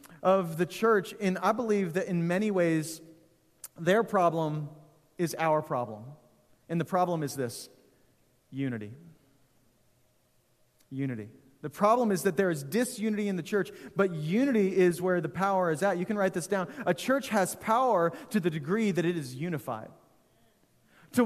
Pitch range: 160-200 Hz